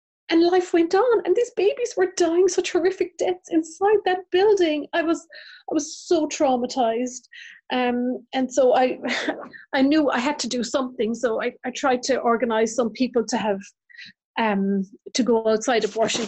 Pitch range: 215-270 Hz